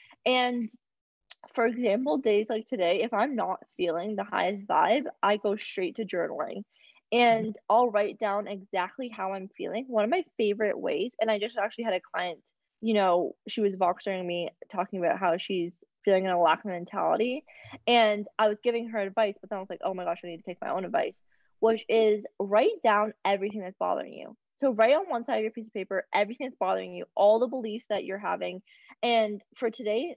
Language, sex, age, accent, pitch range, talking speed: English, female, 20-39, American, 200-240 Hz, 210 wpm